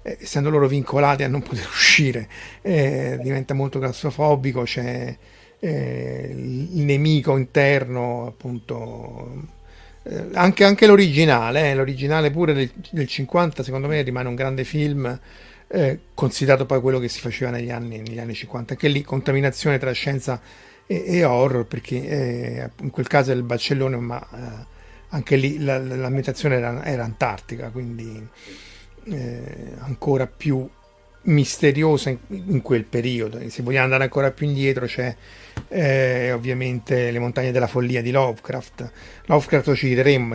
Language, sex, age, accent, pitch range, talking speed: Italian, male, 50-69, native, 120-145 Hz, 140 wpm